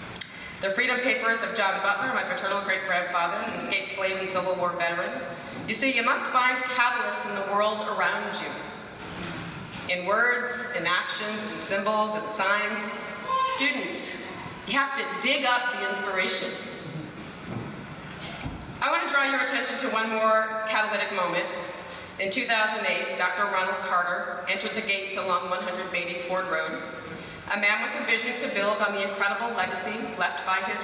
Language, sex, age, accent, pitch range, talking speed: English, female, 30-49, American, 180-230 Hz, 160 wpm